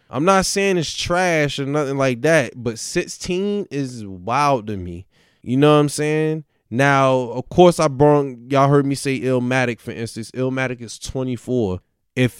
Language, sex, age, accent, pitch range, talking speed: English, male, 20-39, American, 110-145 Hz, 175 wpm